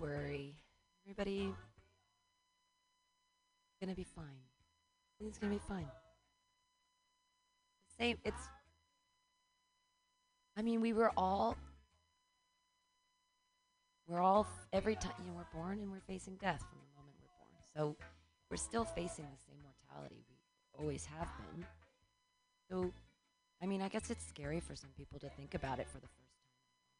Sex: female